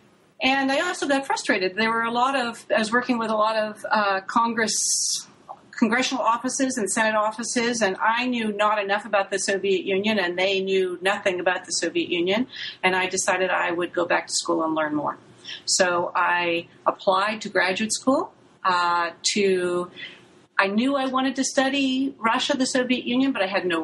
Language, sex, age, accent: English, female, 40-59, American